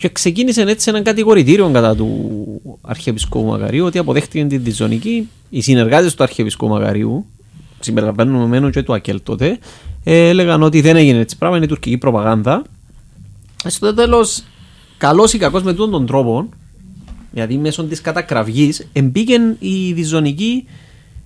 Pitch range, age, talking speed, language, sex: 120-160 Hz, 30-49, 140 wpm, Greek, male